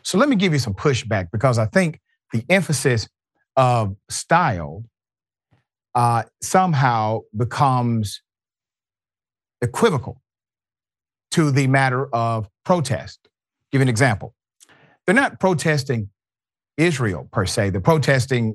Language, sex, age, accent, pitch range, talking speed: English, male, 40-59, American, 110-135 Hz, 115 wpm